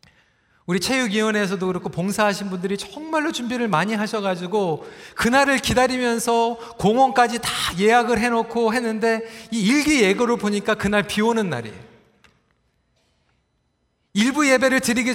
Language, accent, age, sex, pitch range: Korean, native, 40-59, male, 180-240 Hz